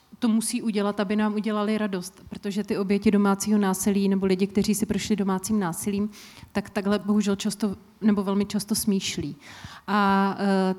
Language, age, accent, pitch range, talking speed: Czech, 30-49, native, 190-210 Hz, 160 wpm